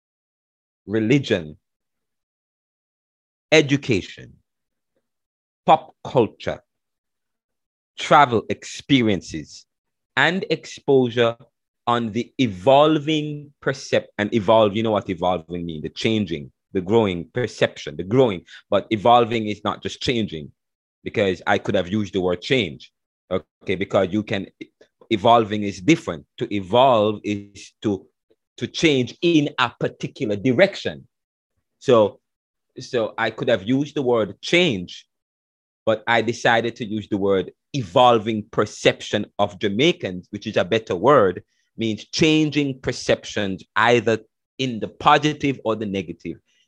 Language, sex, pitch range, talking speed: English, male, 100-135 Hz, 120 wpm